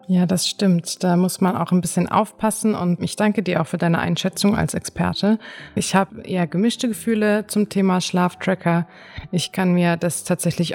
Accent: German